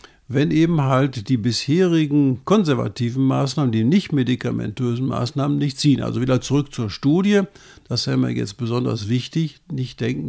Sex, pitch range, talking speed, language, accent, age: male, 130-160 Hz, 150 wpm, German, German, 50-69